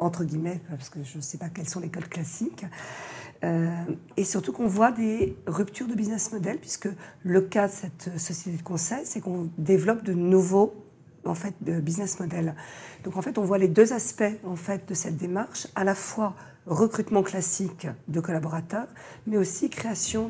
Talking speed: 190 wpm